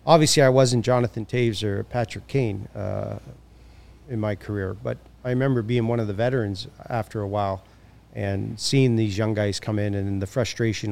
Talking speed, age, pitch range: 180 wpm, 40-59, 100-120 Hz